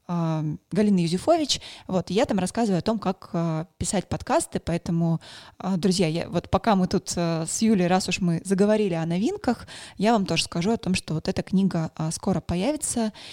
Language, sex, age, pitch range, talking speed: Russian, female, 20-39, 175-210 Hz, 170 wpm